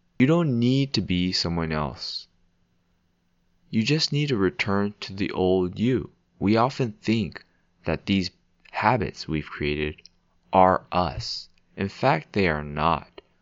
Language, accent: English, American